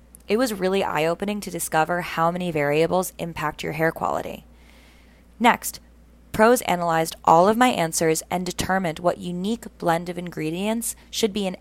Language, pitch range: English, 160-210 Hz